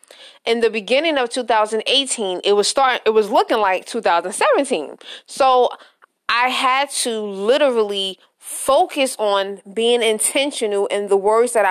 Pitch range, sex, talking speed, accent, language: 200-245 Hz, female, 135 wpm, American, English